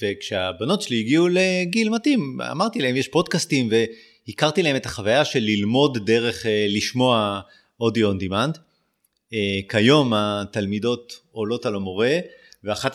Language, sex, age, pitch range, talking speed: Hebrew, male, 30-49, 105-145 Hz, 120 wpm